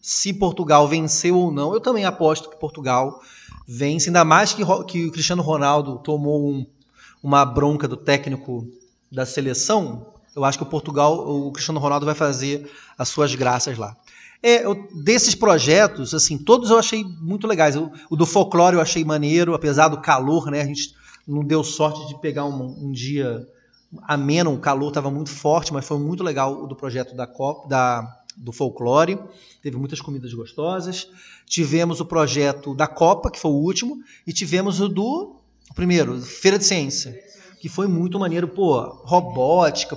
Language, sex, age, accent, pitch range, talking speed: Portuguese, male, 30-49, Brazilian, 140-180 Hz, 175 wpm